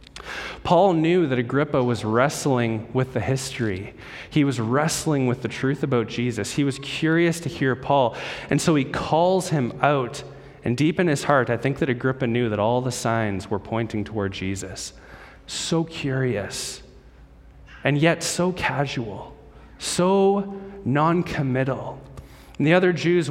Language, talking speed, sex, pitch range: English, 150 wpm, male, 120-155 Hz